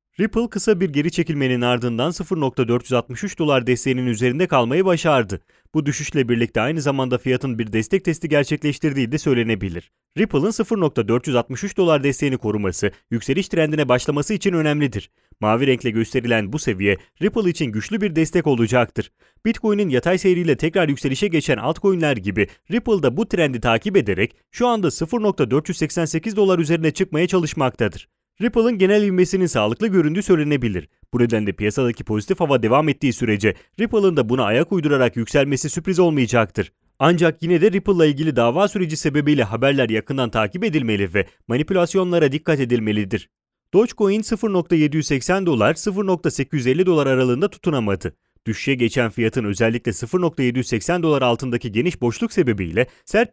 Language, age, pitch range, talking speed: Italian, 30-49, 120-180 Hz, 135 wpm